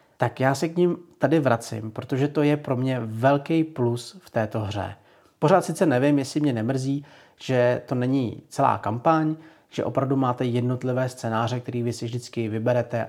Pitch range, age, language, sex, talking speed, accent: 120-145 Hz, 30-49, Czech, male, 175 wpm, native